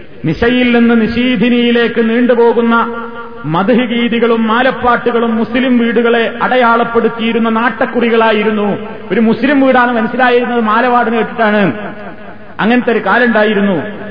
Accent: native